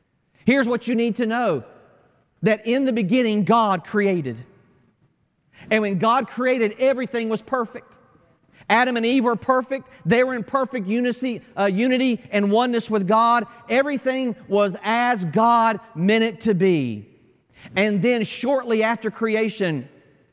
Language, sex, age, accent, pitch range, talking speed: English, male, 40-59, American, 195-240 Hz, 140 wpm